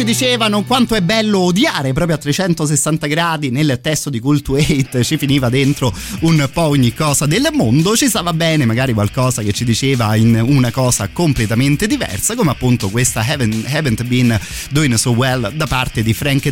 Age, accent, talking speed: 30-49, native, 180 wpm